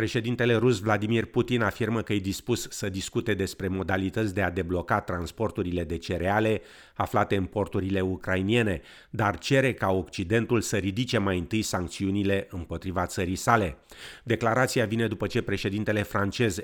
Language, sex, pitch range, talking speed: Romanian, male, 95-115 Hz, 145 wpm